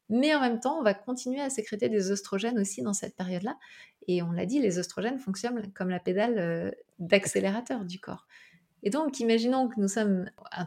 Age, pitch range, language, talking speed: 20-39, 185-235 Hz, French, 195 wpm